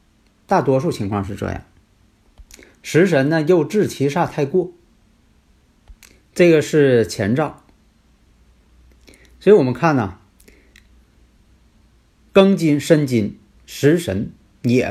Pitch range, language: 100-150 Hz, Chinese